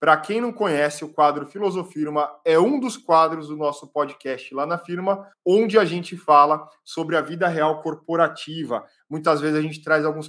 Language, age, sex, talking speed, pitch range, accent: Portuguese, 20-39, male, 185 wpm, 150-175 Hz, Brazilian